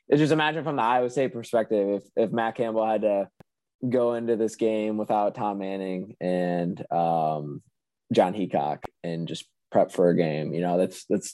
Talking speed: 180 wpm